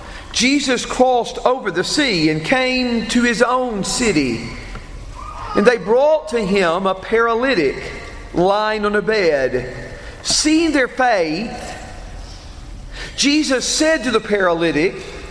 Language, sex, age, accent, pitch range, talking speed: English, male, 40-59, American, 205-275 Hz, 120 wpm